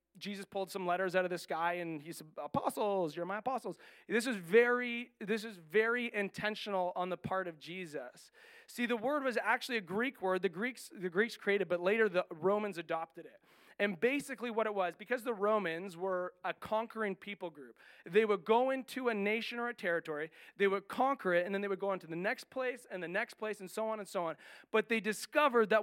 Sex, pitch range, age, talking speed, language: male, 185-235 Hz, 30-49, 225 wpm, English